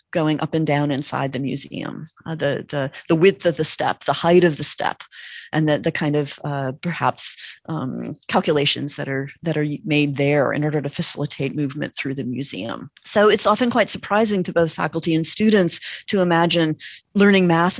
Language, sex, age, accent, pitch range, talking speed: English, female, 30-49, American, 155-195 Hz, 190 wpm